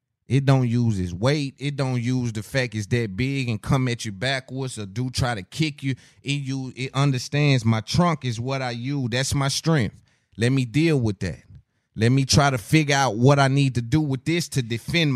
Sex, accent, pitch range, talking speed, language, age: male, American, 110-135 Hz, 225 wpm, English, 30-49